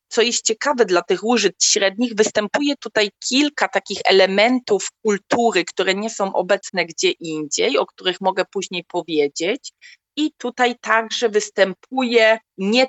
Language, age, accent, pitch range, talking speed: Polish, 30-49, native, 185-235 Hz, 135 wpm